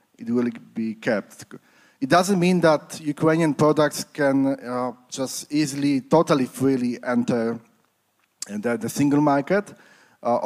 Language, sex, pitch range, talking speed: Polish, male, 125-155 Hz, 125 wpm